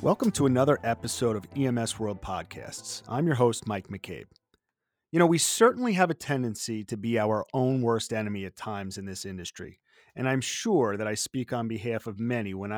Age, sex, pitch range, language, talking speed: 30-49, male, 105-140 Hz, English, 195 wpm